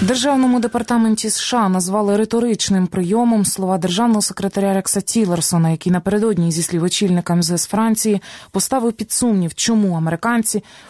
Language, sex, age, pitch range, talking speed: Ukrainian, female, 20-39, 170-220 Hz, 125 wpm